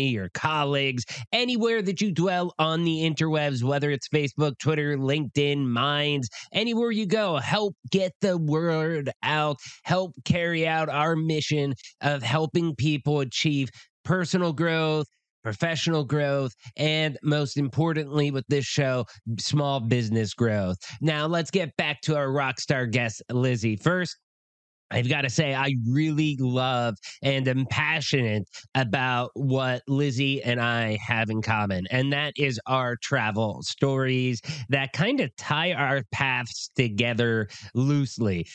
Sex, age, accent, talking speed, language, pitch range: male, 20-39, American, 135 wpm, English, 125-165 Hz